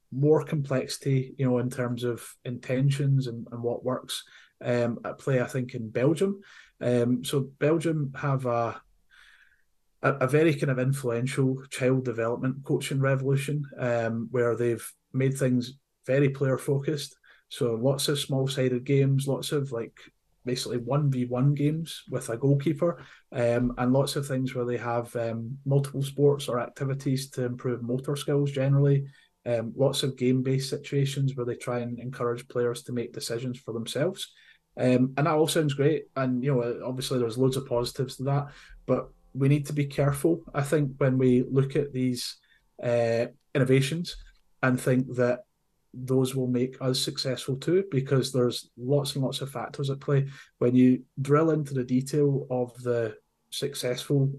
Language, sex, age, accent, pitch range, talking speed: English, male, 30-49, British, 125-140 Hz, 165 wpm